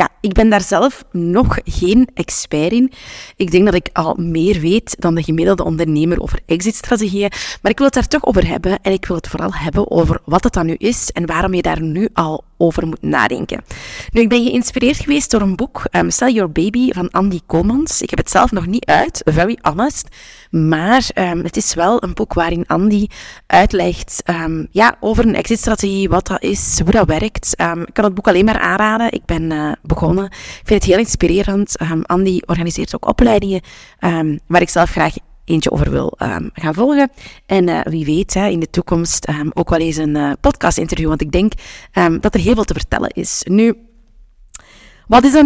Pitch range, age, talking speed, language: 170-215 Hz, 20-39, 210 wpm, Dutch